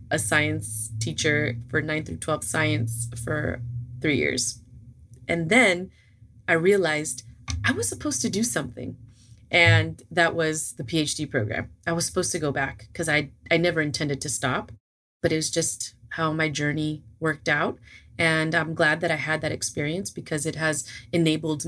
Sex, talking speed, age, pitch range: female, 170 wpm, 30-49, 120-160 Hz